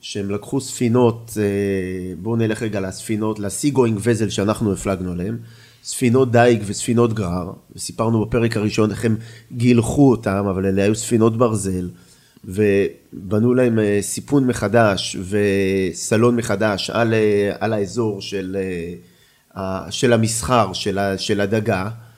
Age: 30-49